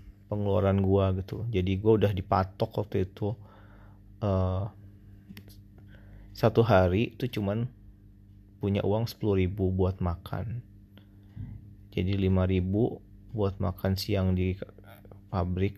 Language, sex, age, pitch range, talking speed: Indonesian, male, 30-49, 95-105 Hz, 105 wpm